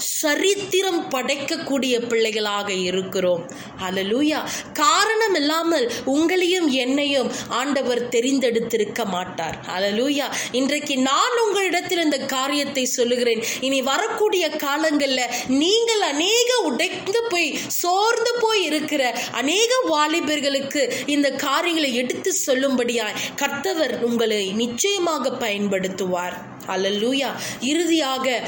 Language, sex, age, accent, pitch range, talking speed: Tamil, female, 20-39, native, 230-330 Hz, 85 wpm